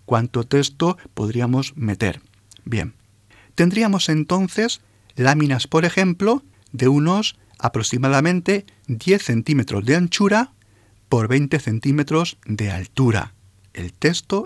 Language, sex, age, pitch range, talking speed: Spanish, male, 40-59, 105-155 Hz, 100 wpm